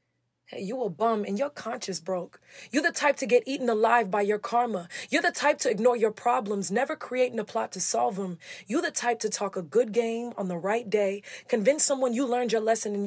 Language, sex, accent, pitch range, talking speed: English, female, American, 175-230 Hz, 235 wpm